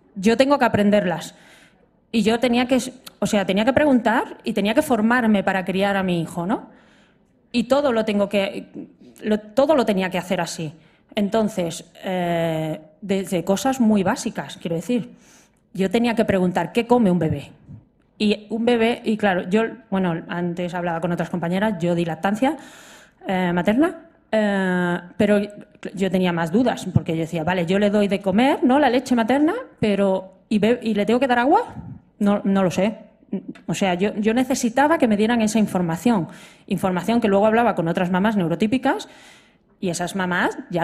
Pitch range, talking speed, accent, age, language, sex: 185-240 Hz, 180 wpm, Spanish, 20-39, Spanish, female